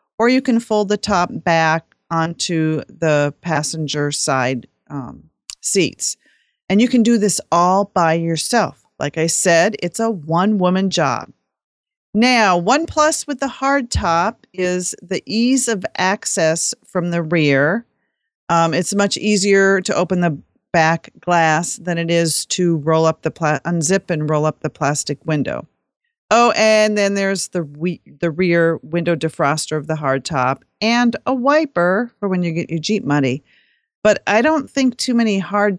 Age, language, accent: 40-59, English, American